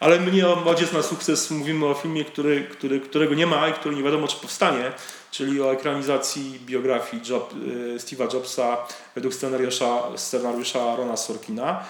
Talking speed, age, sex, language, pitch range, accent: 150 wpm, 40-59, male, Polish, 120-155 Hz, native